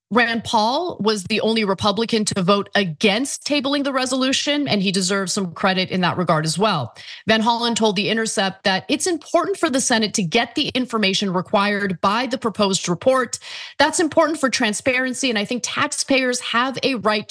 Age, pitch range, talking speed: 30-49, 195-260 Hz, 185 wpm